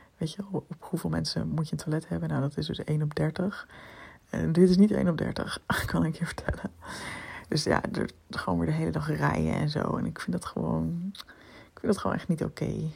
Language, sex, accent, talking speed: Dutch, female, Dutch, 230 wpm